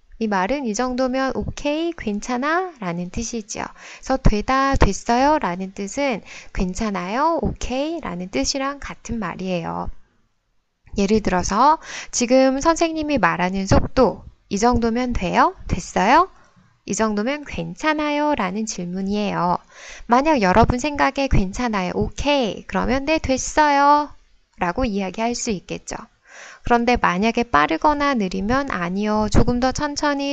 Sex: female